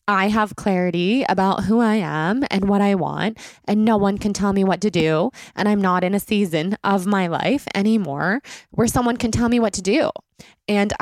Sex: female